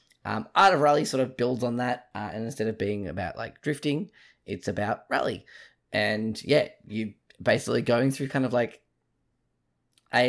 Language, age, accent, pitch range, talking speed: English, 10-29, Australian, 105-130 Hz, 175 wpm